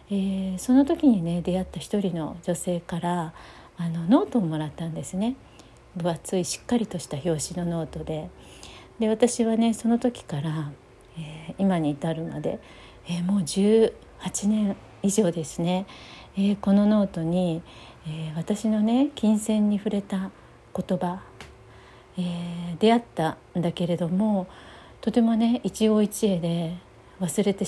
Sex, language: female, Japanese